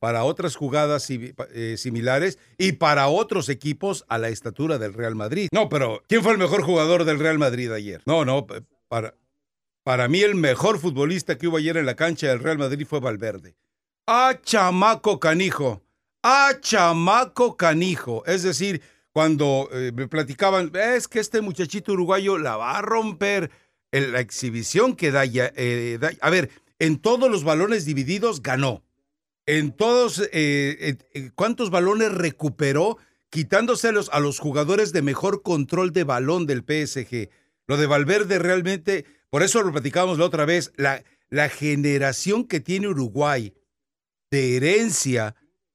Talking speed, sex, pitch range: 155 wpm, male, 135-190 Hz